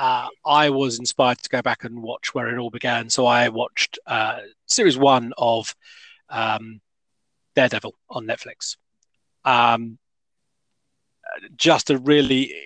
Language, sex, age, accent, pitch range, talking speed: English, male, 30-49, British, 110-130 Hz, 135 wpm